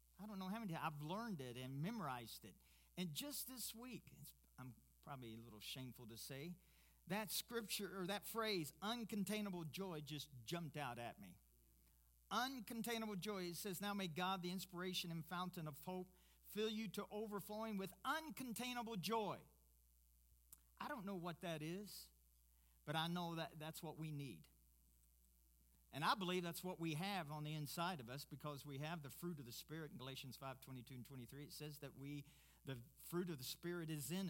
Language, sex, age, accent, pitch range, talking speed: English, male, 50-69, American, 125-195 Hz, 180 wpm